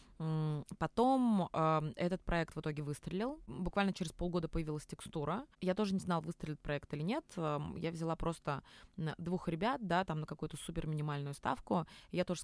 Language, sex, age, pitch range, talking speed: Russian, female, 20-39, 155-185 Hz, 175 wpm